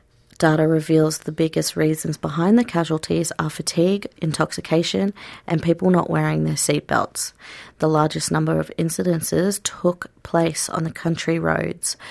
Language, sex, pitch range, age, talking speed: English, female, 155-170 Hz, 30-49, 140 wpm